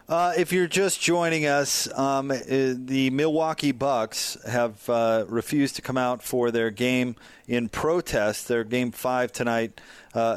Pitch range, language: 110-125 Hz, English